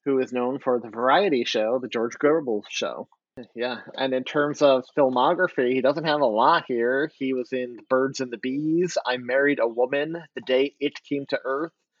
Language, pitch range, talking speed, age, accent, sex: English, 125-150 Hz, 200 wpm, 30-49, American, male